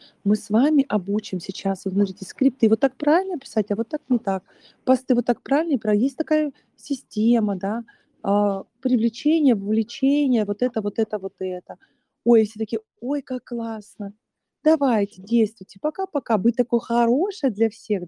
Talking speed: 165 wpm